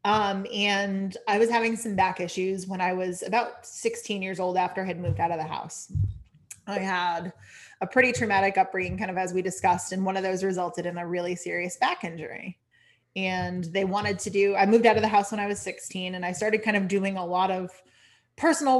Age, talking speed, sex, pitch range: 30-49, 225 wpm, female, 180-220 Hz